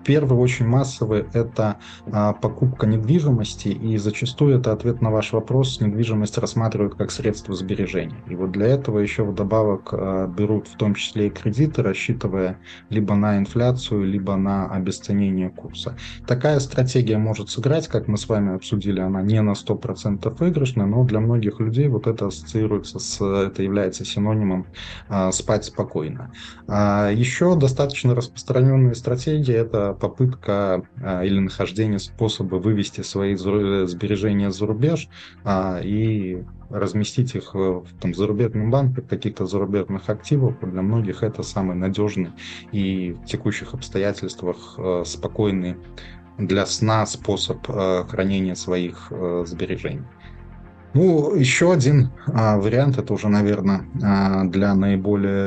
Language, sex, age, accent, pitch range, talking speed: Russian, male, 20-39, native, 95-115 Hz, 120 wpm